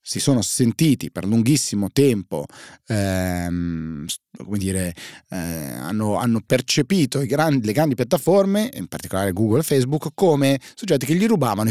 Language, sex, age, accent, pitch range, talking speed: Italian, male, 30-49, native, 100-135 Hz, 145 wpm